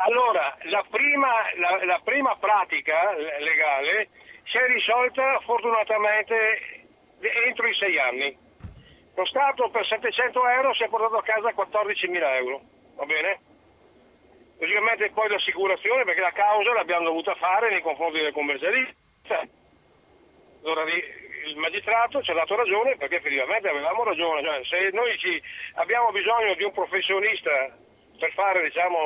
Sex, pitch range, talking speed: male, 165-245 Hz, 135 wpm